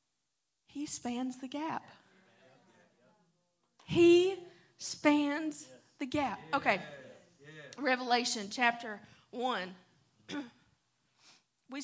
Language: English